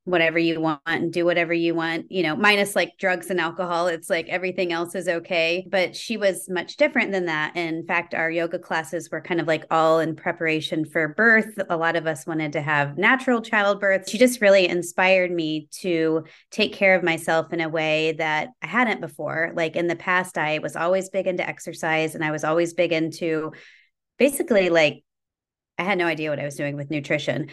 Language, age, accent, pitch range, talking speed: English, 30-49, American, 160-185 Hz, 210 wpm